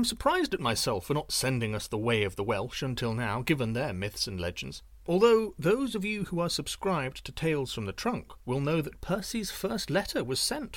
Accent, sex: British, male